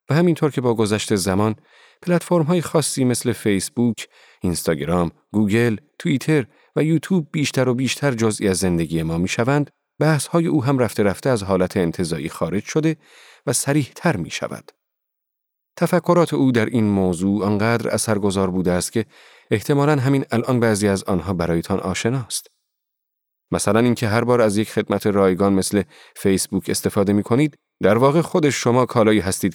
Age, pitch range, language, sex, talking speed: 40-59, 100-140 Hz, Persian, male, 150 wpm